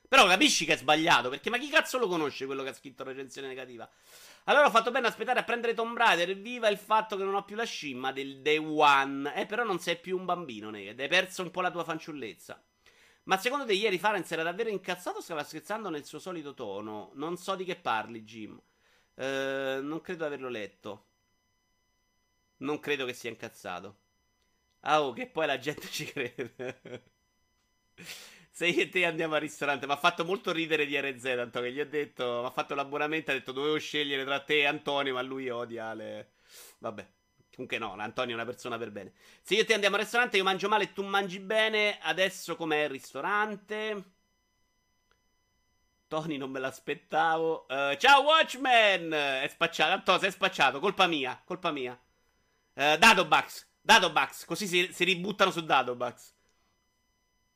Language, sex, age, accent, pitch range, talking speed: Italian, male, 30-49, native, 130-190 Hz, 195 wpm